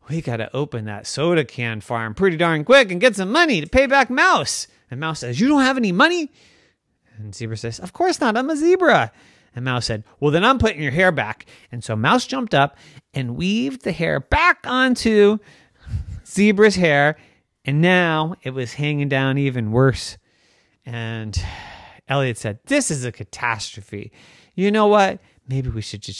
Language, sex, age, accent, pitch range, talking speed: English, male, 30-49, American, 115-180 Hz, 185 wpm